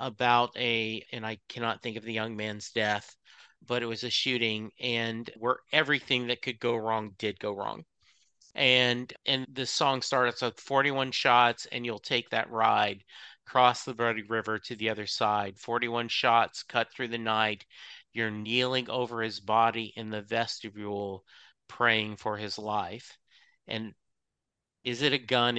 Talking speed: 165 wpm